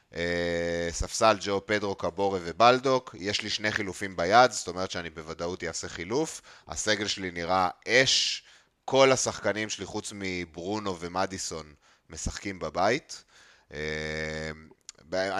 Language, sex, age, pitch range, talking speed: Hebrew, male, 30-49, 85-110 Hz, 115 wpm